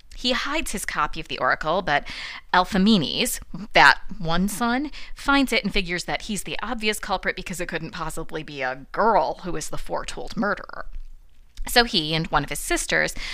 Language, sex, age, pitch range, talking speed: English, female, 30-49, 160-250 Hz, 180 wpm